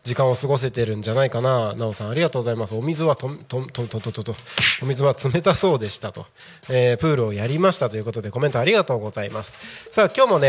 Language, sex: Japanese, male